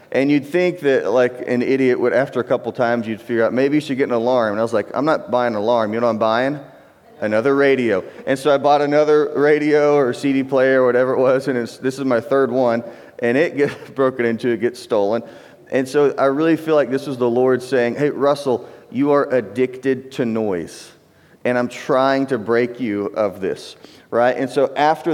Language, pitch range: English, 120-145 Hz